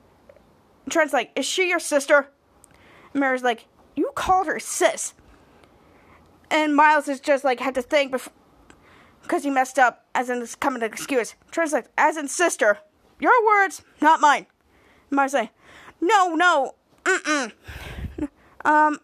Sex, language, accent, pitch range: female, English, American, 280-380 Hz